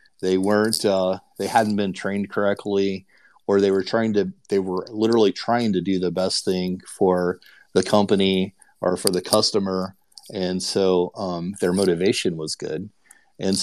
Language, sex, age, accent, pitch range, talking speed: English, male, 40-59, American, 90-100 Hz, 165 wpm